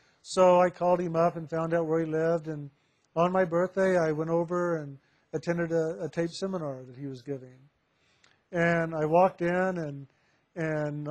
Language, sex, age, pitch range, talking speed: English, male, 50-69, 160-190 Hz, 185 wpm